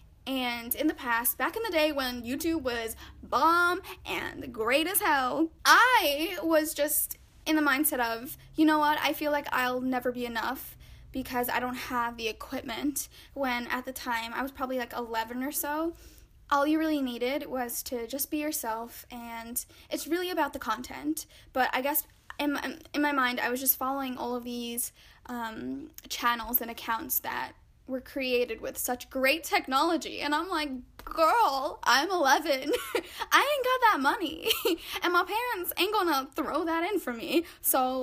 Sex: female